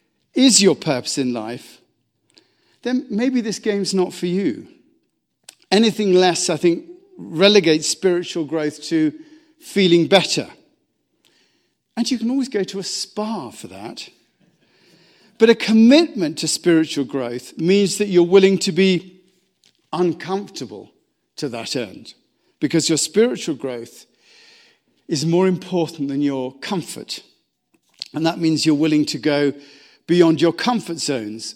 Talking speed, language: 130 wpm, English